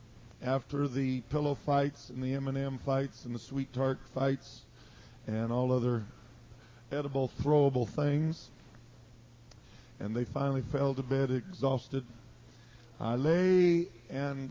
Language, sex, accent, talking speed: English, male, American, 120 wpm